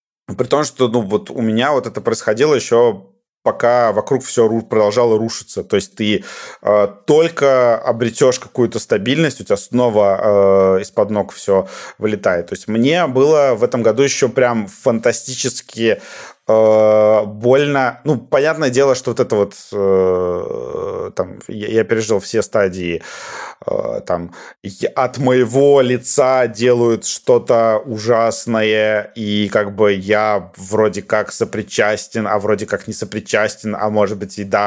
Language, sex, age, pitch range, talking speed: Russian, male, 30-49, 110-130 Hz, 135 wpm